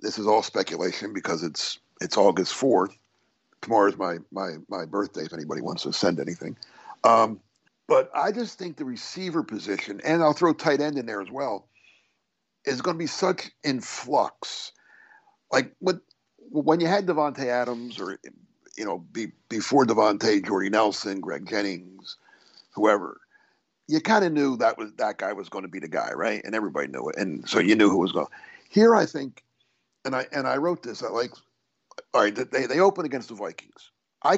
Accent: American